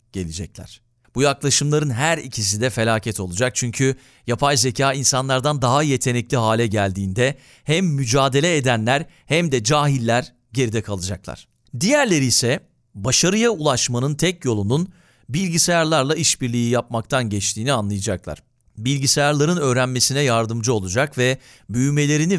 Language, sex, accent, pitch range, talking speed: Turkish, male, native, 115-150 Hz, 110 wpm